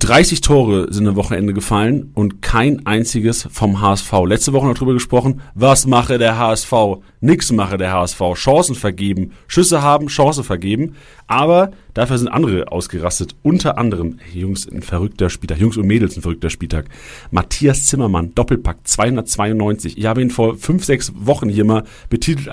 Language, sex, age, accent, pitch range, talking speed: German, male, 40-59, German, 105-145 Hz, 155 wpm